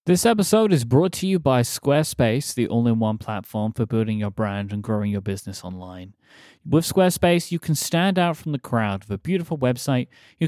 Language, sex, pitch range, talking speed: English, male, 110-150 Hz, 195 wpm